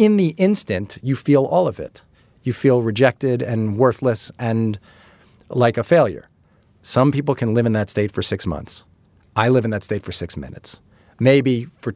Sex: male